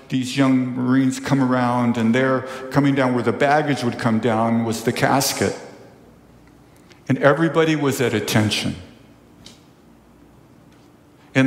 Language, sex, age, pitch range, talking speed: English, male, 50-69, 120-145 Hz, 125 wpm